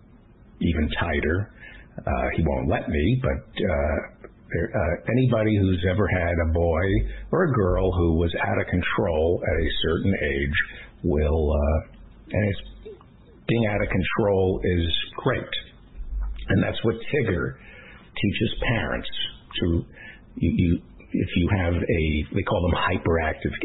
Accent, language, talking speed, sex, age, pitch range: American, English, 140 wpm, male, 60-79, 80-110 Hz